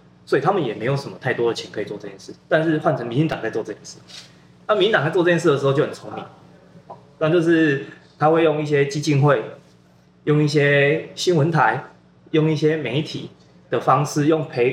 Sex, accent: male, native